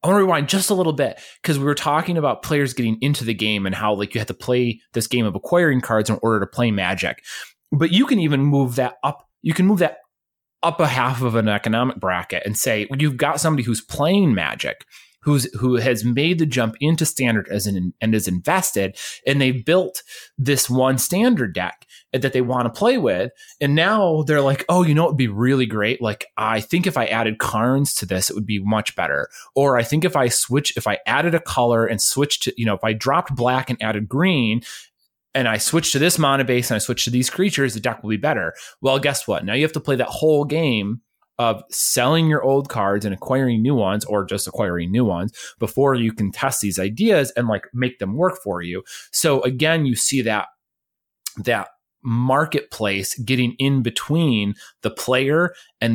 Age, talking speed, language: 20-39, 220 wpm, English